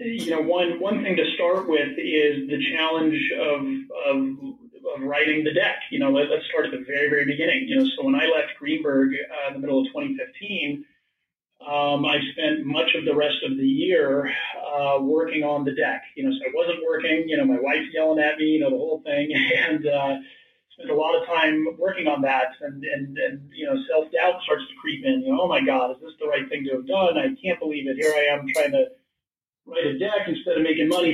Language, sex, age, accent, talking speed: English, male, 30-49, American, 235 wpm